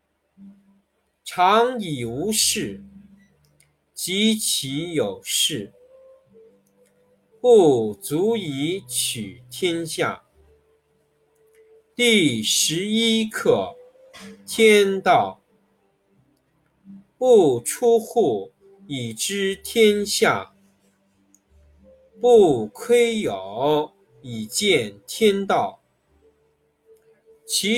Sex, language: male, Chinese